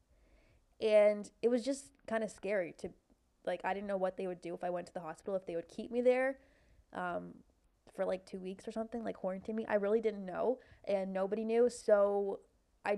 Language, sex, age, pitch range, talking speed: English, female, 20-39, 185-220 Hz, 215 wpm